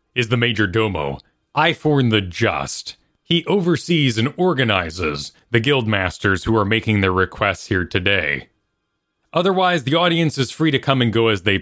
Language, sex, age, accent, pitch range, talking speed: English, male, 30-49, American, 105-155 Hz, 160 wpm